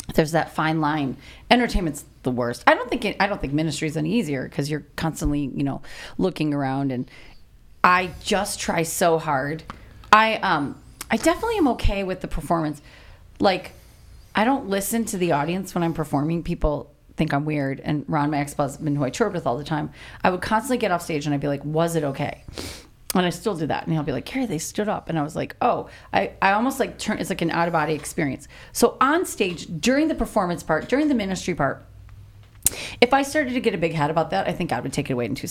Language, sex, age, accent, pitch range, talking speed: English, female, 30-49, American, 150-235 Hz, 235 wpm